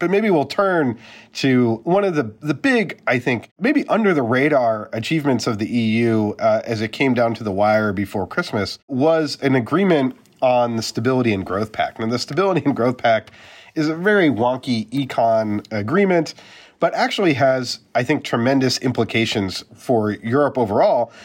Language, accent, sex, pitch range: English, American, male, 105-140 Hz